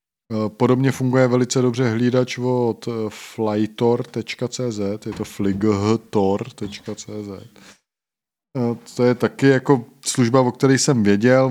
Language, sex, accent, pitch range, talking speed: Czech, male, native, 105-125 Hz, 100 wpm